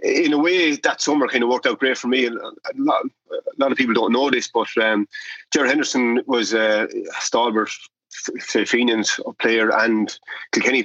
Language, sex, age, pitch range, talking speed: English, male, 30-49, 110-130 Hz, 170 wpm